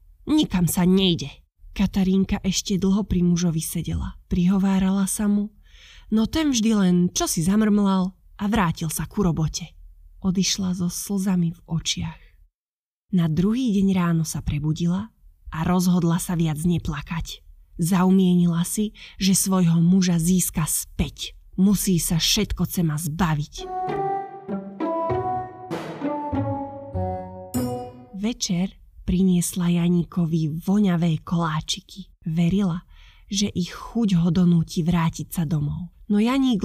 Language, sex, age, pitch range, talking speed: Slovak, female, 20-39, 155-195 Hz, 110 wpm